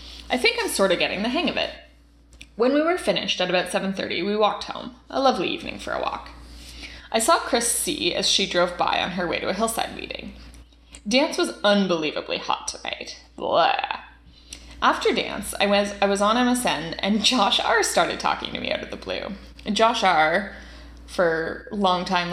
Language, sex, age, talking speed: English, female, 20-39, 185 wpm